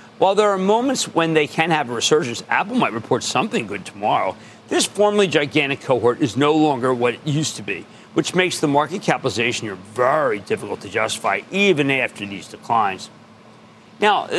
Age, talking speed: 50-69, 180 wpm